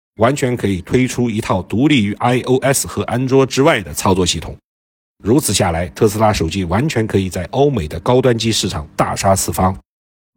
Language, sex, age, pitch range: Chinese, male, 50-69, 90-125 Hz